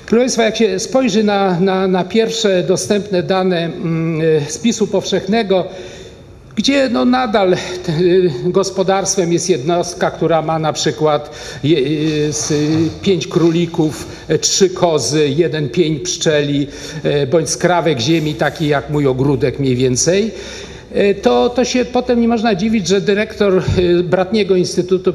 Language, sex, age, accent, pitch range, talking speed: Polish, male, 50-69, native, 155-210 Hz, 120 wpm